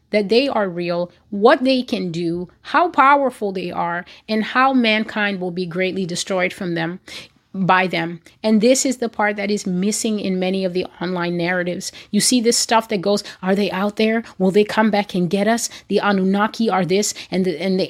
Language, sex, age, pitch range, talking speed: English, female, 30-49, 185-225 Hz, 205 wpm